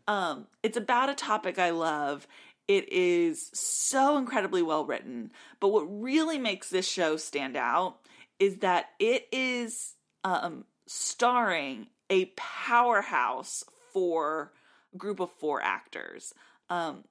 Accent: American